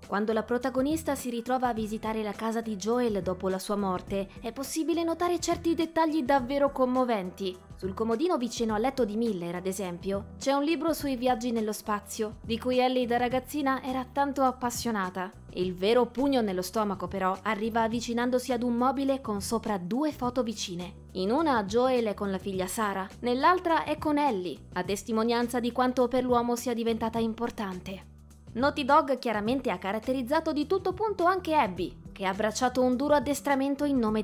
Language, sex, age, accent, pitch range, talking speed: Italian, female, 20-39, native, 210-280 Hz, 175 wpm